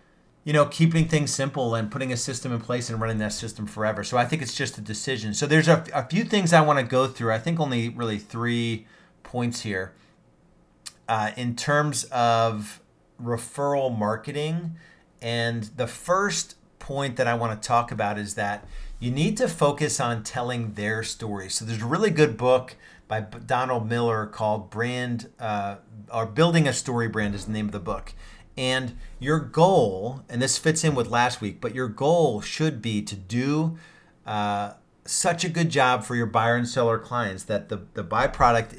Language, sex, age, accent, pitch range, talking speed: English, male, 40-59, American, 110-140 Hz, 190 wpm